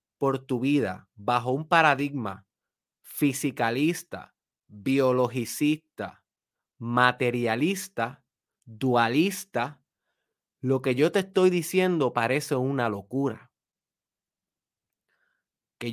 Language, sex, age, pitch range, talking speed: Spanish, male, 30-49, 125-165 Hz, 75 wpm